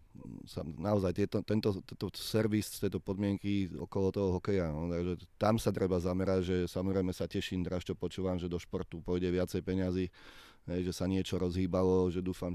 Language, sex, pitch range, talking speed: Slovak, male, 85-95 Hz, 165 wpm